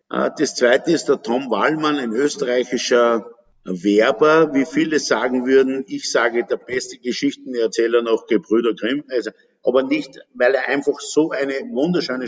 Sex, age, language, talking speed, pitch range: male, 50-69, German, 145 wpm, 120-150 Hz